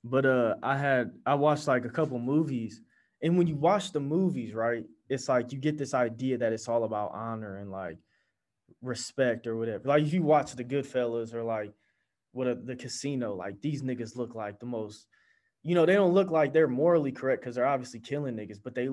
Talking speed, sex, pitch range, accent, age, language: 215 wpm, male, 110-150 Hz, American, 20-39, English